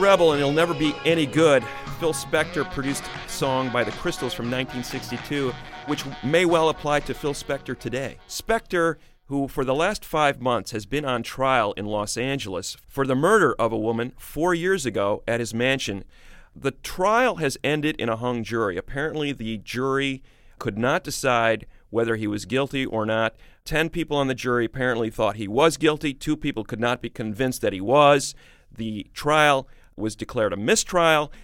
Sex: male